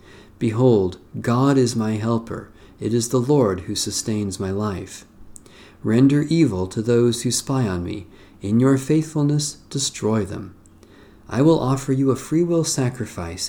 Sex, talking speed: male, 145 wpm